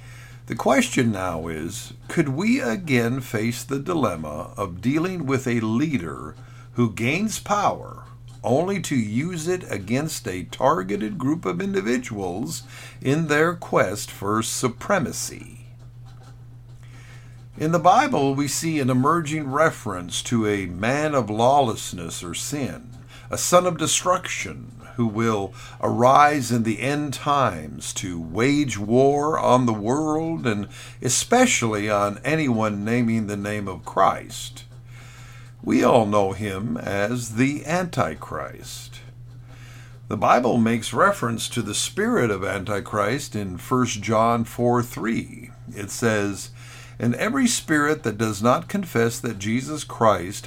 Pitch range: 115-135 Hz